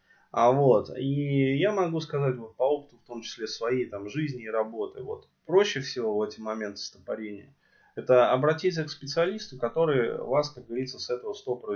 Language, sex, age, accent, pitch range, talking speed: Russian, male, 20-39, native, 110-150 Hz, 175 wpm